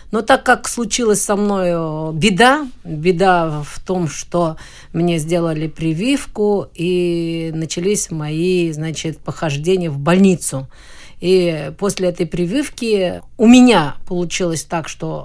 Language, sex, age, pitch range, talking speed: Russian, female, 50-69, 160-200 Hz, 120 wpm